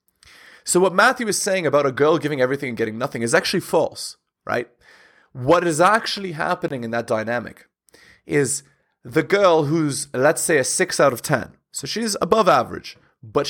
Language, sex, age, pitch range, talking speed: English, male, 30-49, 135-180 Hz, 180 wpm